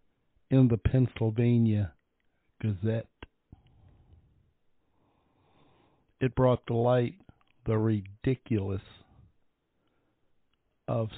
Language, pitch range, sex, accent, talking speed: English, 105-120 Hz, male, American, 60 wpm